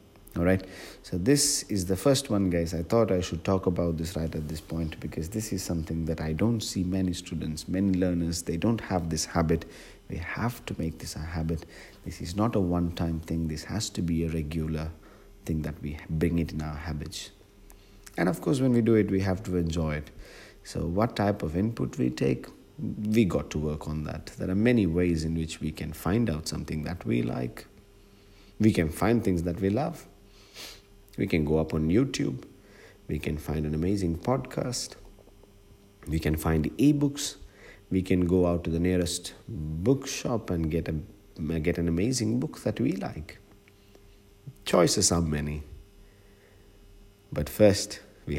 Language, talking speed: English, 185 wpm